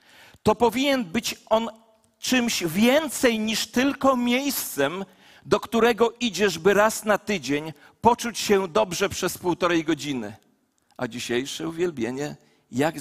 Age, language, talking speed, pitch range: 40-59, Polish, 120 wpm, 155-220 Hz